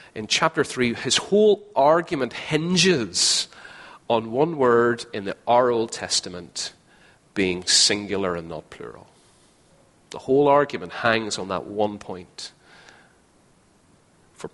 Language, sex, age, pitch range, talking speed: English, male, 40-59, 90-115 Hz, 115 wpm